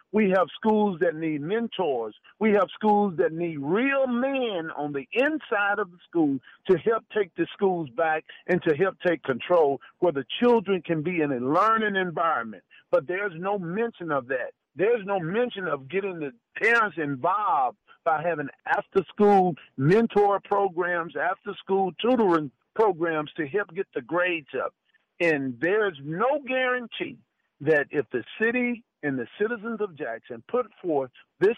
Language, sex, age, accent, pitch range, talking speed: English, male, 50-69, American, 160-215 Hz, 160 wpm